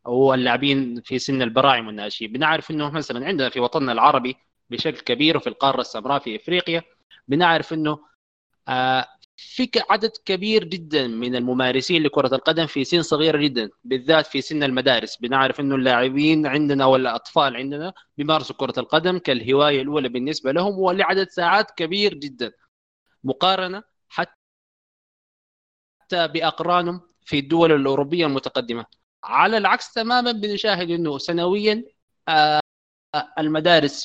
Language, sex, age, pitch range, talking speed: Arabic, male, 20-39, 130-170 Hz, 125 wpm